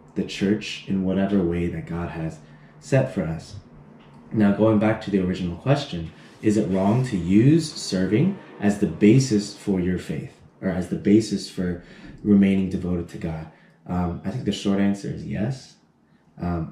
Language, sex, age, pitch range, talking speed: English, male, 20-39, 90-110 Hz, 170 wpm